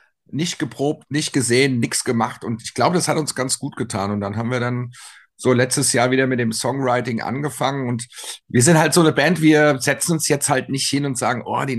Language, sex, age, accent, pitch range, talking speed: German, male, 50-69, German, 120-150 Hz, 235 wpm